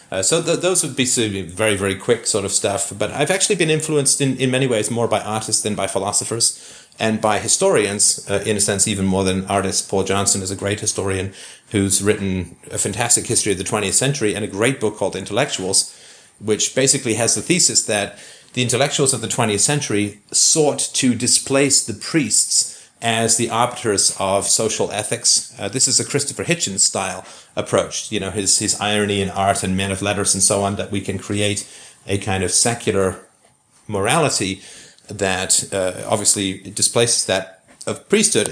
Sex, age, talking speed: male, 40-59, 185 wpm